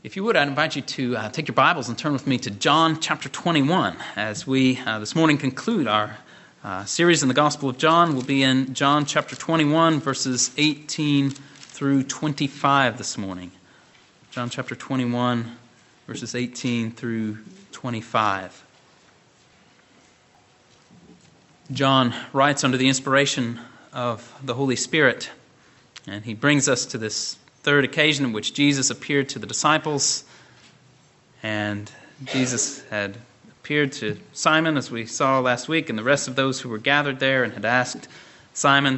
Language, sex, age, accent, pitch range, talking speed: English, male, 30-49, American, 125-145 Hz, 155 wpm